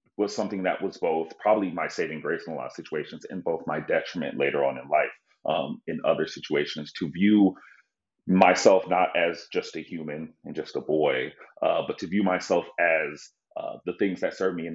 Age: 30-49